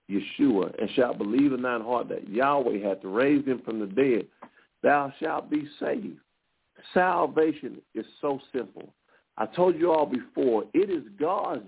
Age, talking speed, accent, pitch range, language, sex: 50-69, 160 wpm, American, 145-240 Hz, English, male